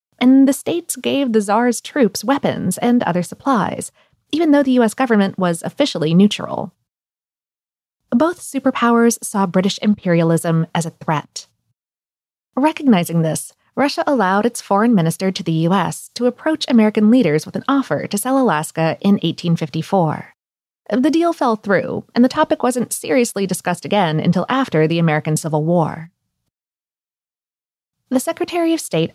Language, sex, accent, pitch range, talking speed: English, female, American, 185-265 Hz, 145 wpm